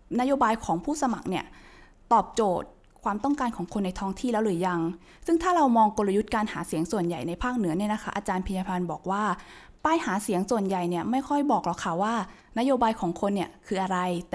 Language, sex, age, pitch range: Thai, female, 20-39, 185-250 Hz